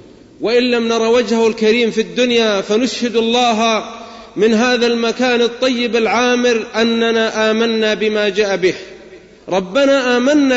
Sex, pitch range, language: male, 230-280 Hz, English